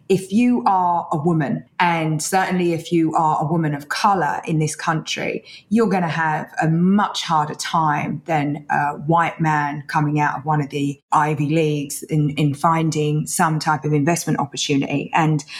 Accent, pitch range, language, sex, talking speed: British, 155-185 Hz, English, female, 175 wpm